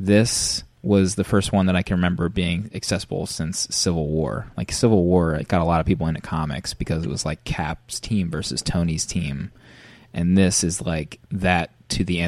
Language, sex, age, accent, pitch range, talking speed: English, male, 20-39, American, 85-100 Hz, 200 wpm